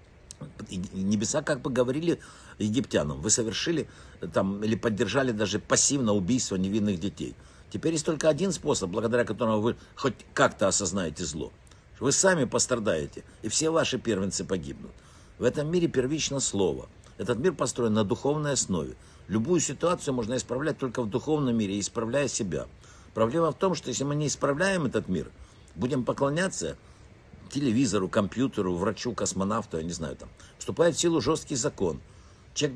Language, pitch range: Russian, 100-140 Hz